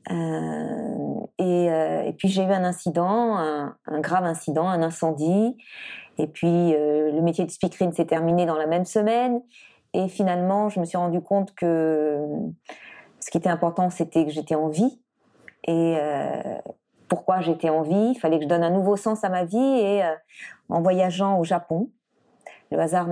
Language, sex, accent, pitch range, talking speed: French, female, French, 160-195 Hz, 180 wpm